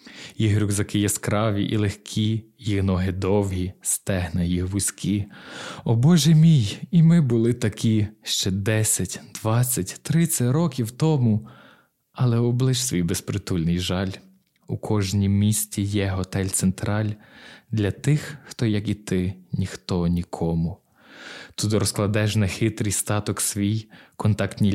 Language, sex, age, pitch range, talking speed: Ukrainian, male, 20-39, 95-110 Hz, 115 wpm